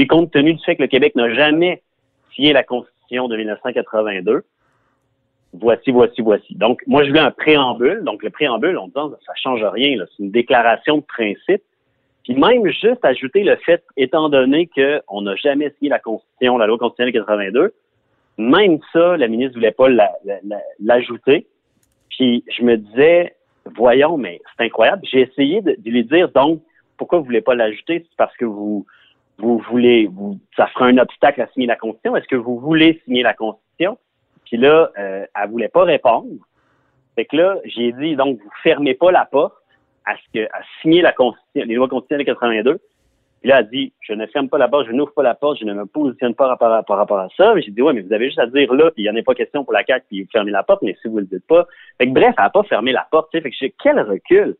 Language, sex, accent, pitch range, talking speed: French, male, French, 120-160 Hz, 230 wpm